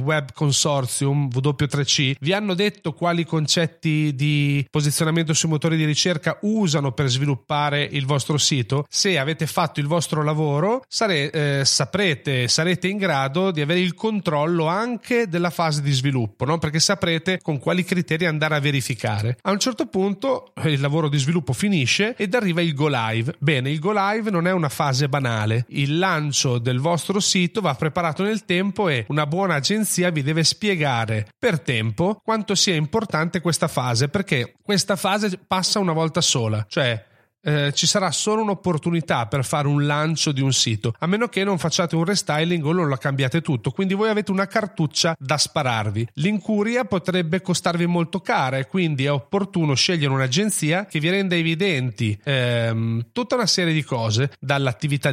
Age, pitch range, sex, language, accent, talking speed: 30-49, 140-190 Hz, male, Italian, native, 170 wpm